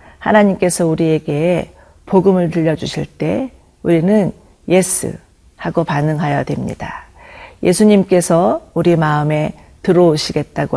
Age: 40-59